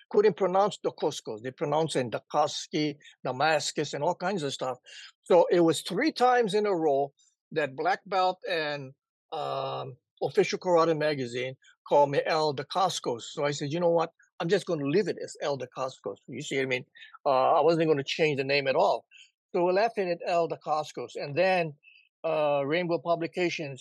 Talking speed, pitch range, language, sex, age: 195 wpm, 145-190 Hz, English, male, 60-79